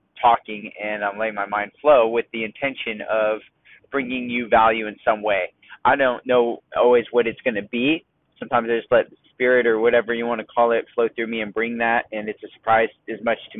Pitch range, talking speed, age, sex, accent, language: 115-140 Hz, 230 wpm, 20-39, male, American, English